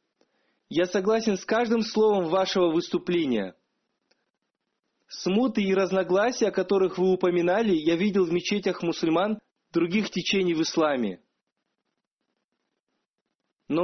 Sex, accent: male, native